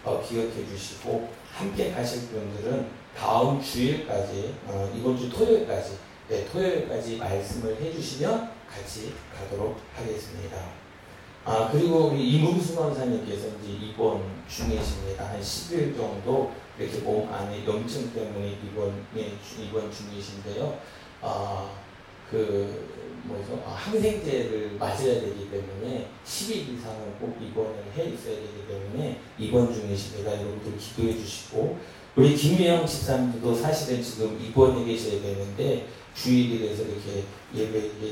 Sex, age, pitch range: male, 40-59, 100-125 Hz